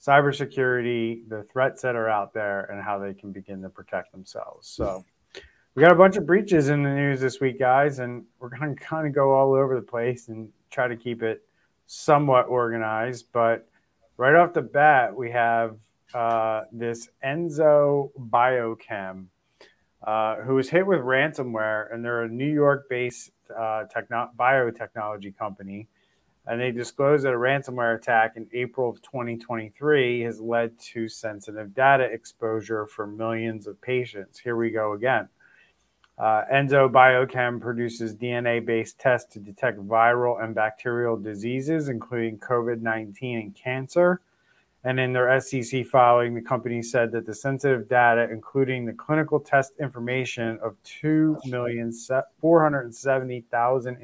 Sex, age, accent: male, 30-49, American